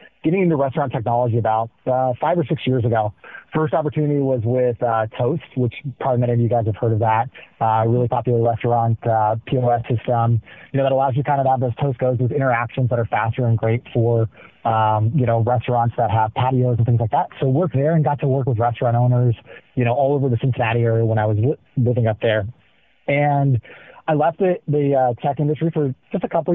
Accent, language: American, English